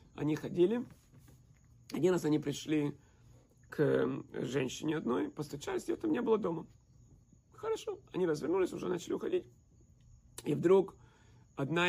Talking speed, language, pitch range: 120 wpm, Russian, 115-180 Hz